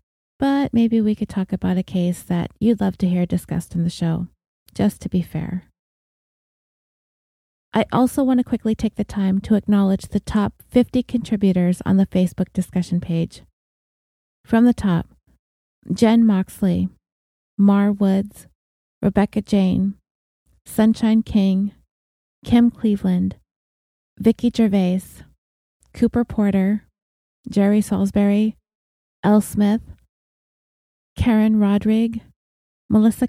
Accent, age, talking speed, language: American, 20-39, 115 wpm, English